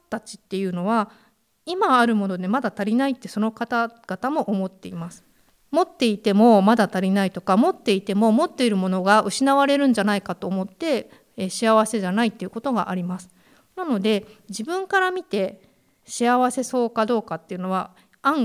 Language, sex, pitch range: Japanese, female, 195-255 Hz